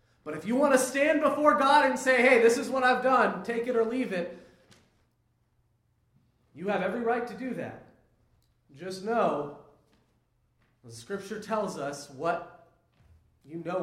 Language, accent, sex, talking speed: English, American, male, 160 wpm